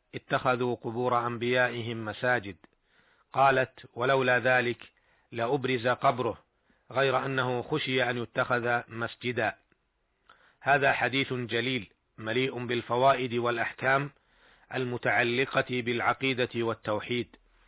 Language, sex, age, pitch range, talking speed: Arabic, male, 40-59, 120-135 Hz, 80 wpm